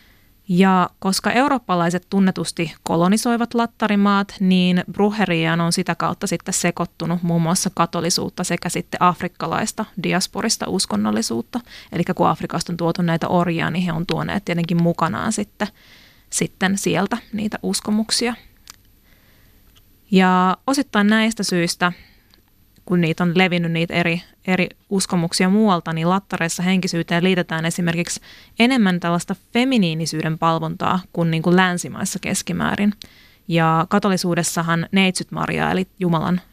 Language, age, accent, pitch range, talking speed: Finnish, 20-39, native, 170-205 Hz, 120 wpm